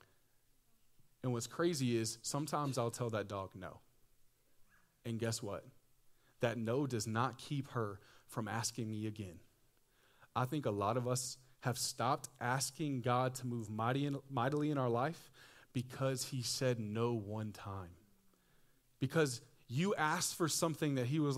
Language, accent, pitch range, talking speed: English, American, 115-145 Hz, 150 wpm